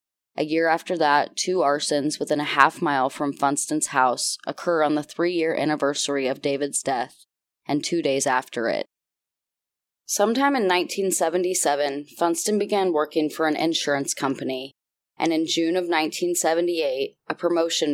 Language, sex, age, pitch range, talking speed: English, female, 20-39, 140-165 Hz, 145 wpm